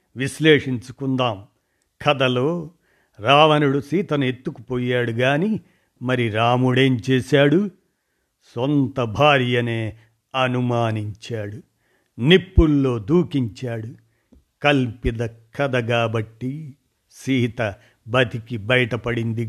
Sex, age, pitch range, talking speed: male, 50-69, 120-160 Hz, 60 wpm